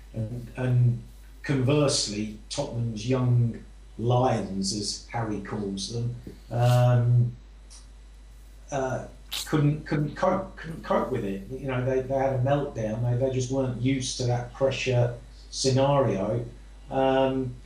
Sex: male